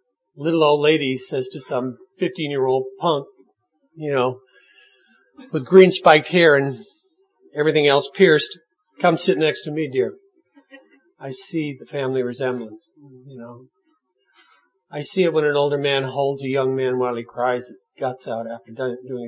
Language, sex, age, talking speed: English, male, 50-69, 160 wpm